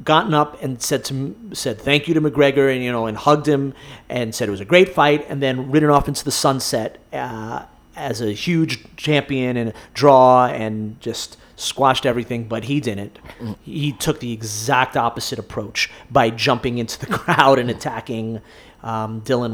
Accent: American